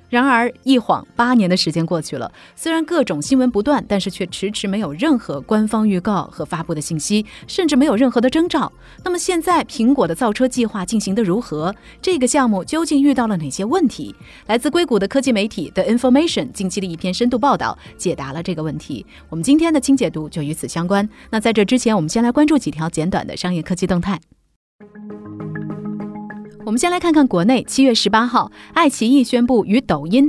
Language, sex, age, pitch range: Chinese, female, 30-49, 185-275 Hz